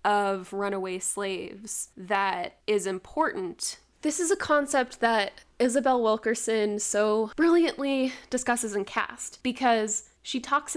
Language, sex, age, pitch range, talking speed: English, female, 10-29, 195-230 Hz, 115 wpm